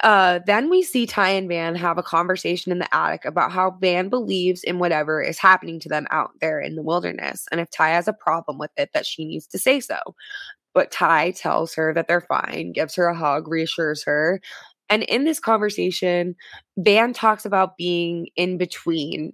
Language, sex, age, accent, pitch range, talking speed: English, female, 20-39, American, 160-190 Hz, 200 wpm